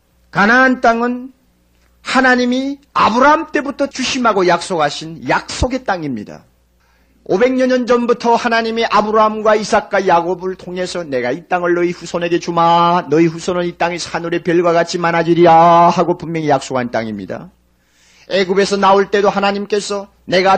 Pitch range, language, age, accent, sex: 125-200 Hz, Korean, 40-59, native, male